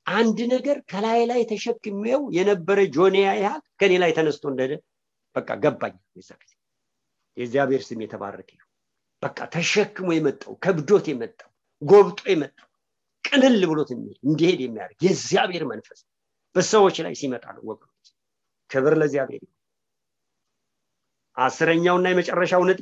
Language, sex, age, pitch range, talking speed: English, male, 50-69, 150-235 Hz, 125 wpm